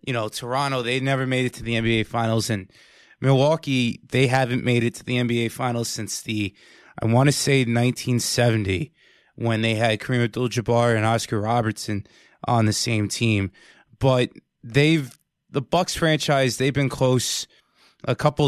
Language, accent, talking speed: English, American, 160 wpm